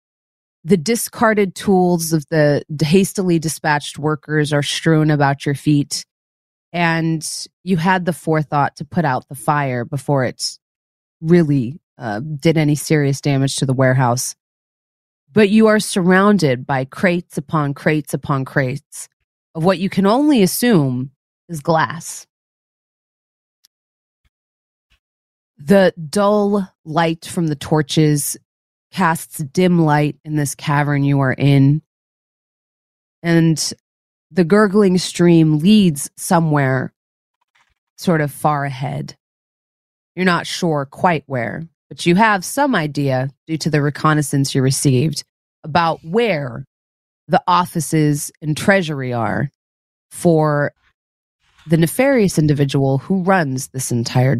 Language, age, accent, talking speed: English, 30-49, American, 120 wpm